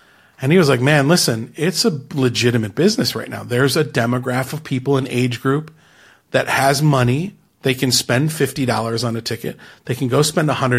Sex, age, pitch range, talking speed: male, 40-59, 120-160 Hz, 190 wpm